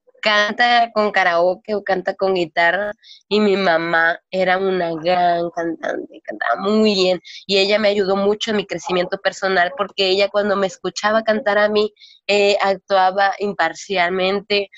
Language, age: Spanish, 20-39